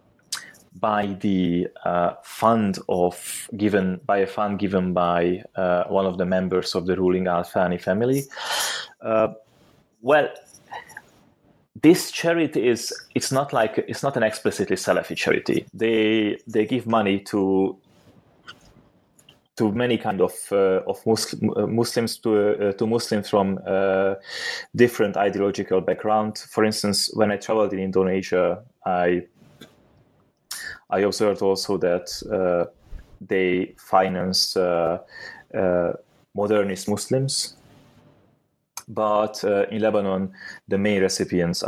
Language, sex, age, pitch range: English, male, 30-49, 95-110 Hz